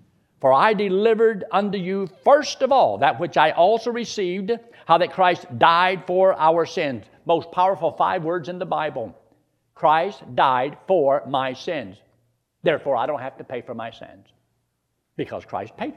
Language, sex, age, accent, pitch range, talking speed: English, male, 60-79, American, 125-205 Hz, 165 wpm